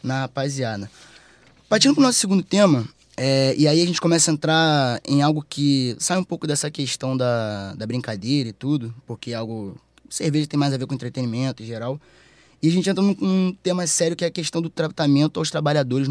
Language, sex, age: Portuguese, male, 20-39